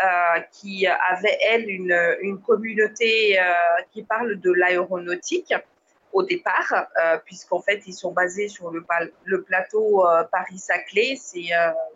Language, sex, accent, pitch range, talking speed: French, female, French, 185-245 Hz, 140 wpm